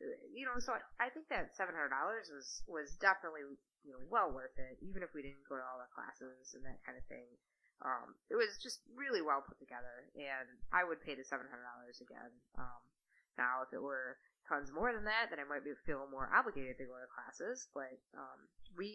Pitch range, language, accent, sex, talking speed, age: 140-190 Hz, English, American, female, 210 wpm, 20-39